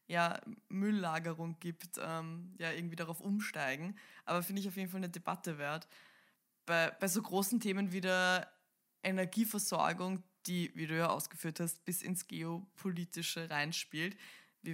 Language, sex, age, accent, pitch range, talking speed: German, female, 20-39, German, 165-200 Hz, 145 wpm